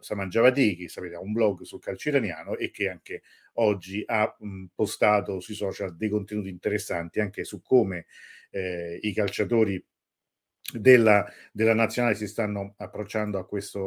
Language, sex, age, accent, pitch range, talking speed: Italian, male, 50-69, native, 95-115 Hz, 140 wpm